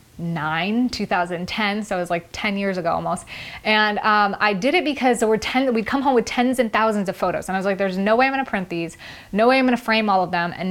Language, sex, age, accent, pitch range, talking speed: English, female, 20-39, American, 190-225 Hz, 280 wpm